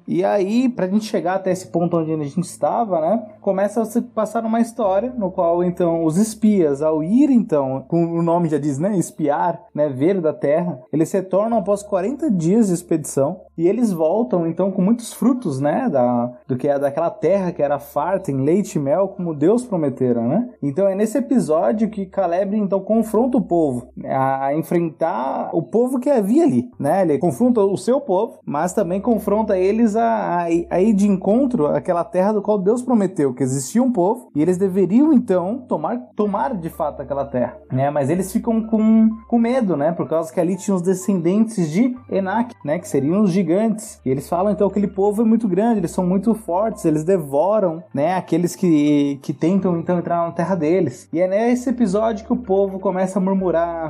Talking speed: 200 wpm